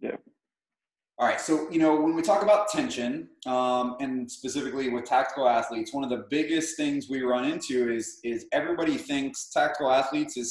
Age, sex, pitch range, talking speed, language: 20-39, male, 120-150 Hz, 175 wpm, English